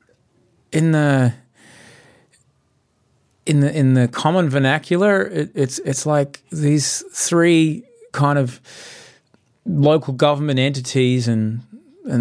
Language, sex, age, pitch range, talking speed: English, male, 30-49, 125-165 Hz, 105 wpm